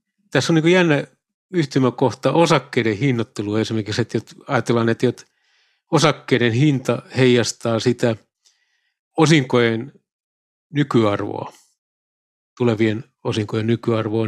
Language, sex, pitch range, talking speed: Finnish, male, 115-145 Hz, 85 wpm